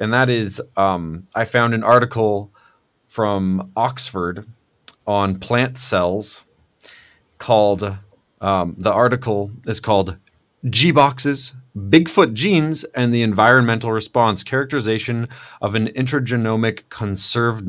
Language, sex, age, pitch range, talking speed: English, male, 30-49, 100-125 Hz, 105 wpm